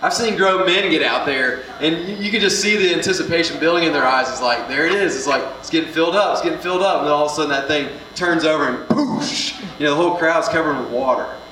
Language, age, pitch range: English, 30-49, 130-175 Hz